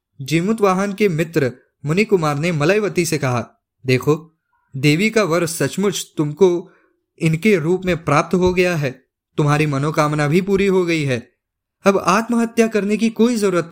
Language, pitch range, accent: Hindi, 155-205 Hz, native